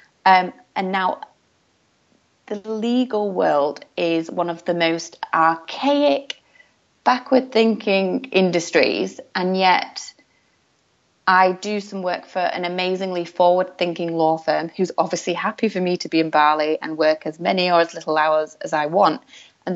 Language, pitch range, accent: English, 170-205 Hz, British